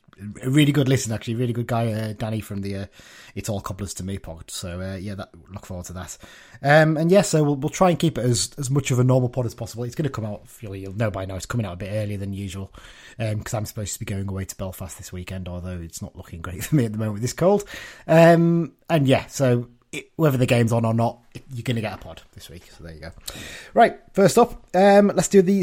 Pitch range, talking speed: 110-160 Hz, 280 wpm